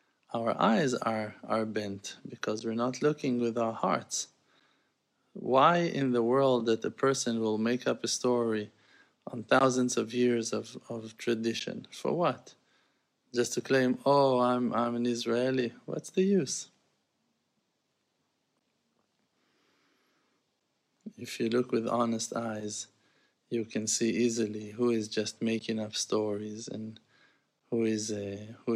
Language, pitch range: English, 110-120 Hz